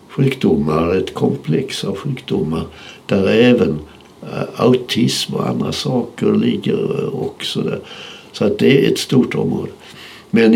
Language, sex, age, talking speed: Swedish, male, 60-79, 125 wpm